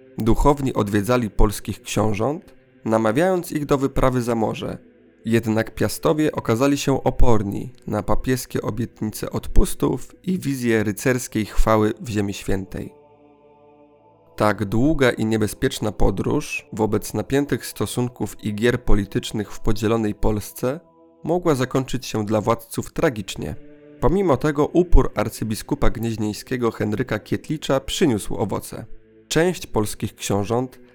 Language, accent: Polish, native